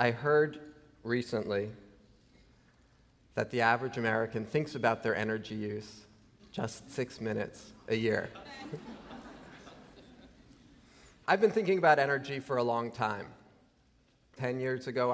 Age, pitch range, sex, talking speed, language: 30-49, 110-135 Hz, male, 115 wpm, English